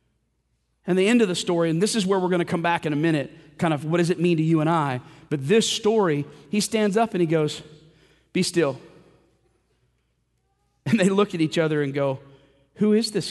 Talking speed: 225 wpm